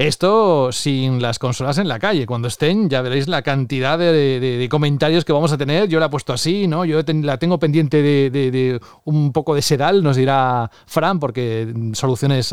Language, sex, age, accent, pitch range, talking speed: Spanish, male, 30-49, Spanish, 140-190 Hz, 205 wpm